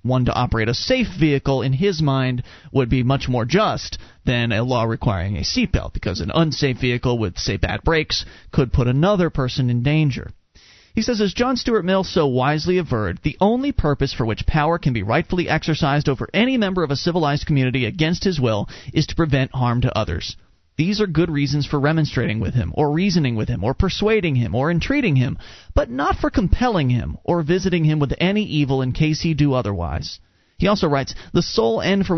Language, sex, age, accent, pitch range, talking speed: English, male, 30-49, American, 125-185 Hz, 205 wpm